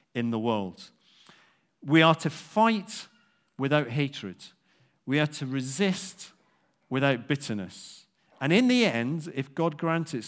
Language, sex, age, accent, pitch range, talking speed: English, male, 40-59, British, 105-145 Hz, 135 wpm